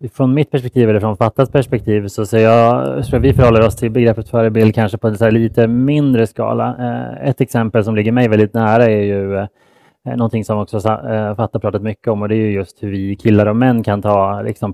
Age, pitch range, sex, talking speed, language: 30-49, 105-115 Hz, male, 230 wpm, English